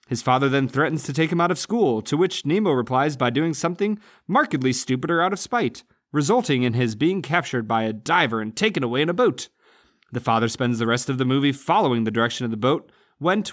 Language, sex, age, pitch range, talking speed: English, male, 30-49, 120-180 Hz, 225 wpm